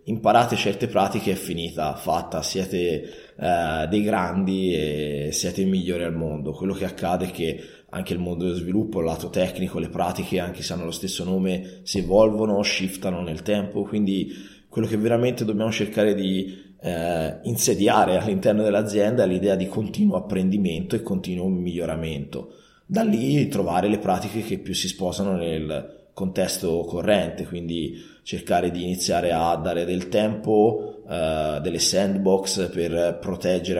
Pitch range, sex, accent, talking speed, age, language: 85-100 Hz, male, native, 150 wpm, 20-39, Italian